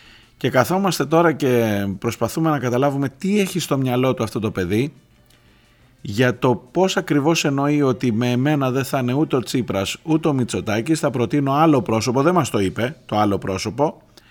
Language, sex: Greek, male